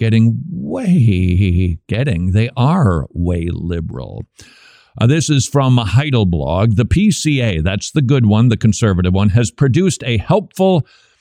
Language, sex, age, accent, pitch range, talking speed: English, male, 50-69, American, 100-145 Hz, 145 wpm